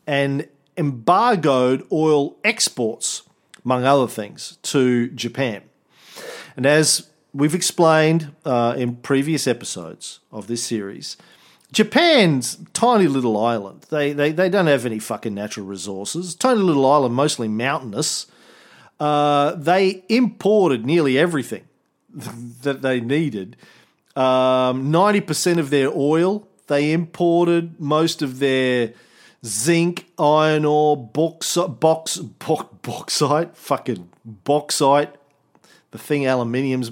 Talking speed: 110 wpm